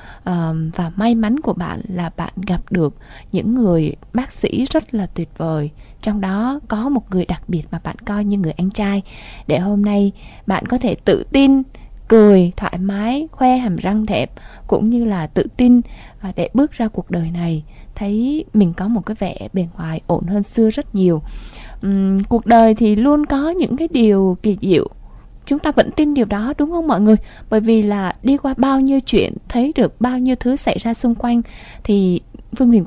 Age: 20-39